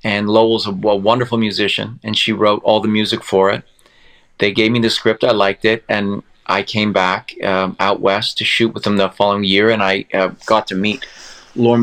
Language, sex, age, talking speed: English, male, 30-49, 215 wpm